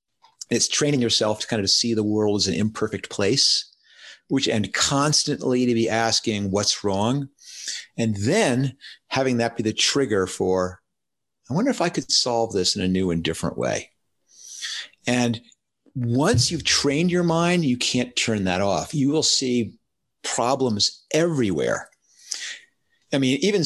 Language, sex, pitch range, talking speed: English, male, 105-140 Hz, 155 wpm